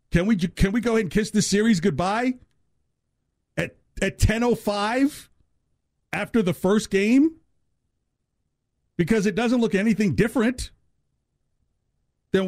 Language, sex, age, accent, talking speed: English, male, 50-69, American, 130 wpm